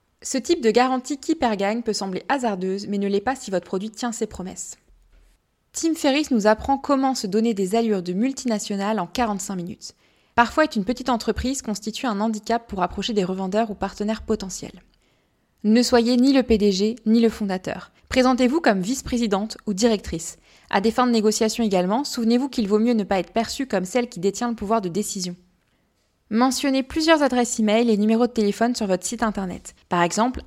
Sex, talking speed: female, 195 wpm